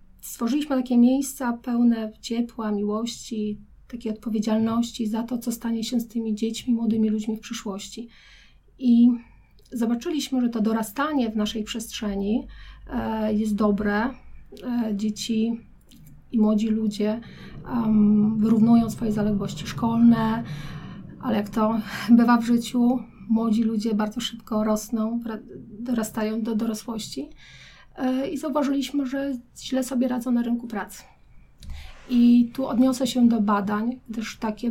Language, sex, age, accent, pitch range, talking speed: Polish, female, 30-49, native, 215-240 Hz, 120 wpm